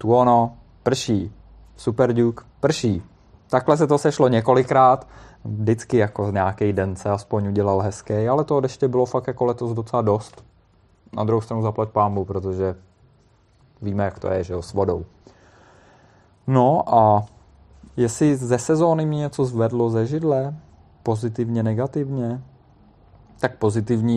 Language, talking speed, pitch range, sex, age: Czech, 140 wpm, 100-120 Hz, male, 20-39